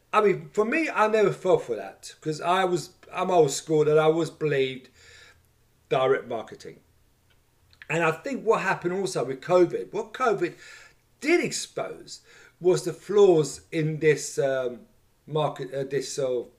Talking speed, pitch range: 155 wpm, 155-230 Hz